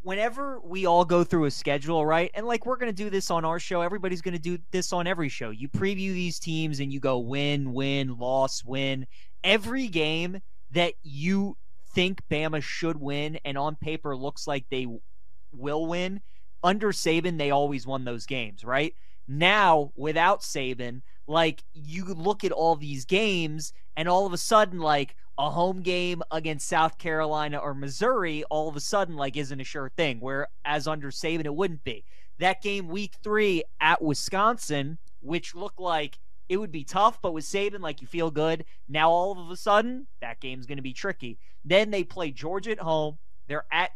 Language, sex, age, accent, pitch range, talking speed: English, male, 20-39, American, 140-185 Hz, 185 wpm